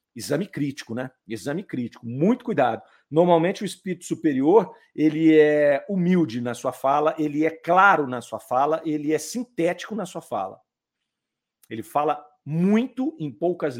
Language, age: Portuguese, 50-69